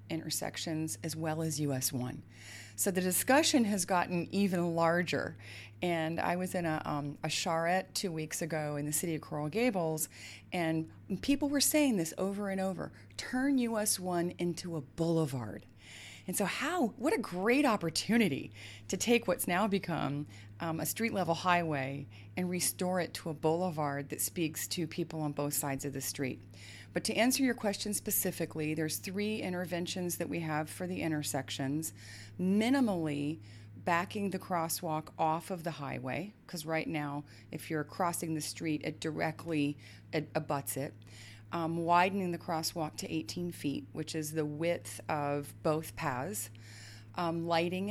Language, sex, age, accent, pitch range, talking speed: English, female, 30-49, American, 140-180 Hz, 160 wpm